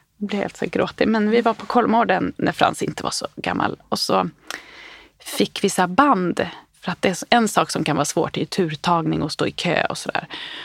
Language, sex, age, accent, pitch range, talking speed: Swedish, female, 30-49, native, 190-255 Hz, 230 wpm